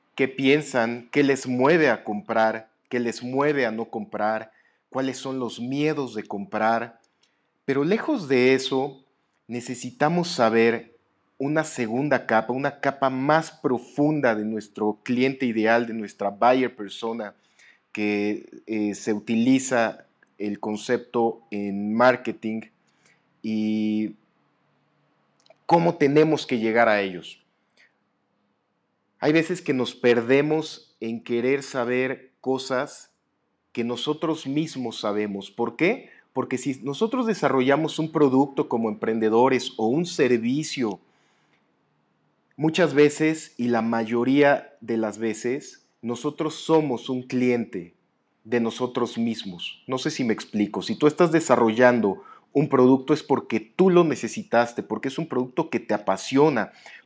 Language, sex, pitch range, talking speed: Spanish, male, 115-140 Hz, 125 wpm